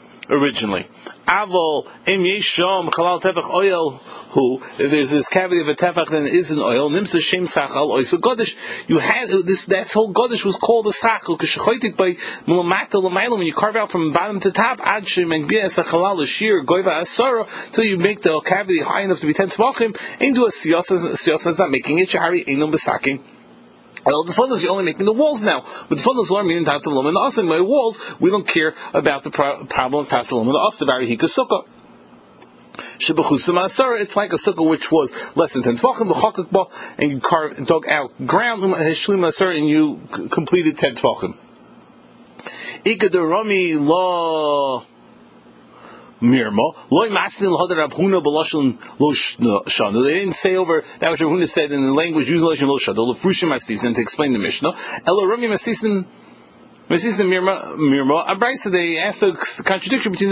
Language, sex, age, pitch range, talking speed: English, male, 30-49, 160-205 Hz, 145 wpm